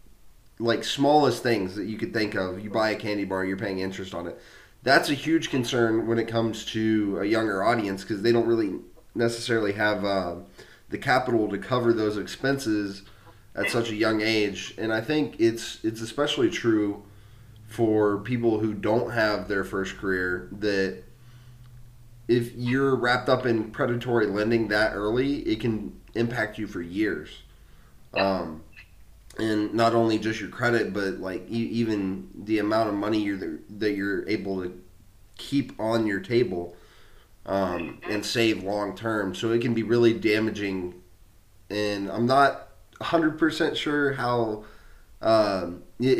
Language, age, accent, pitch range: English, 30-49, American, 95-115 Hz